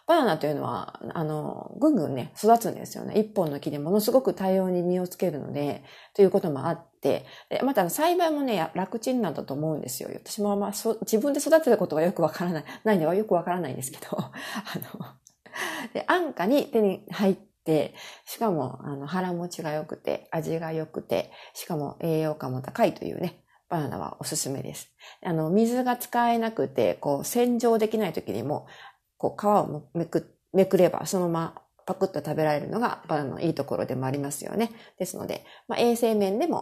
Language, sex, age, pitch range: Japanese, female, 40-59, 155-220 Hz